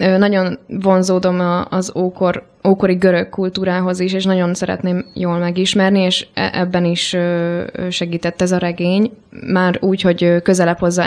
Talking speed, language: 130 wpm, Hungarian